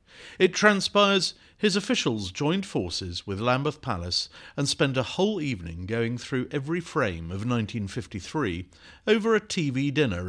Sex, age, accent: male, 50-69, British